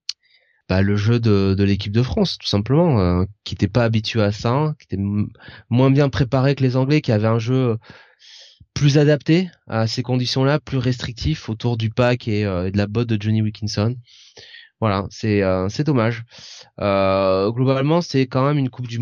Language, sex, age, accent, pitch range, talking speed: French, male, 20-39, French, 105-130 Hz, 195 wpm